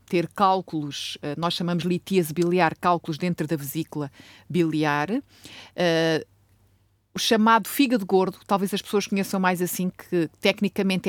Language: Portuguese